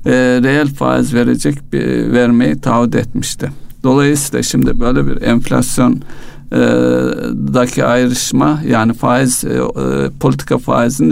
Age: 60-79